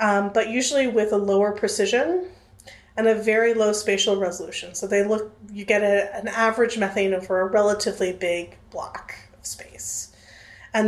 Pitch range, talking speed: 190-230 Hz, 165 wpm